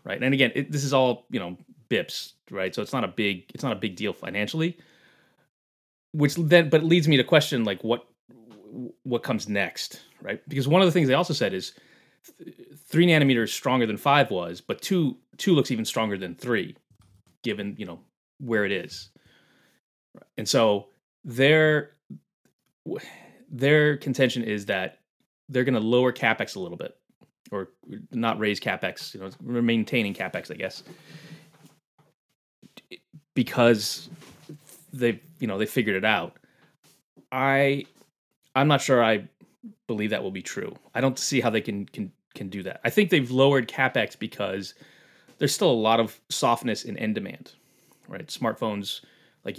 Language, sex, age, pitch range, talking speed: English, male, 20-39, 110-155 Hz, 160 wpm